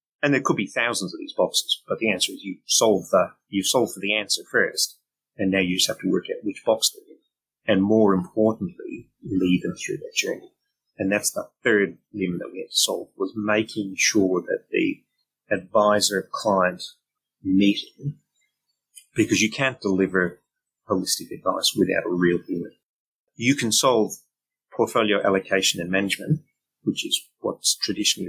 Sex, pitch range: male, 95-135 Hz